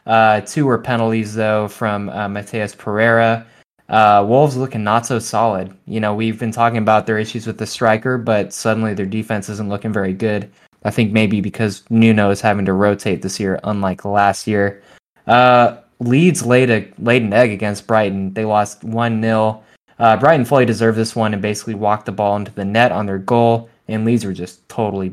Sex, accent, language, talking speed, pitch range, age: male, American, English, 200 wpm, 105-120 Hz, 20-39